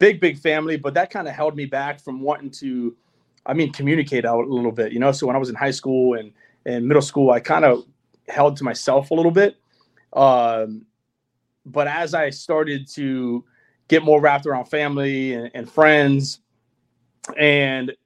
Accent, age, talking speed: American, 30-49, 190 wpm